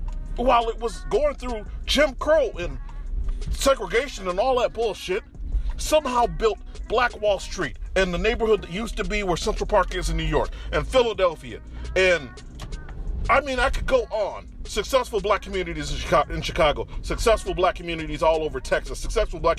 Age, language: 40-59, English